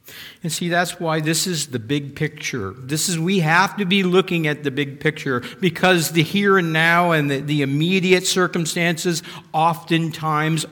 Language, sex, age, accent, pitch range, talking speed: English, male, 50-69, American, 115-155 Hz, 175 wpm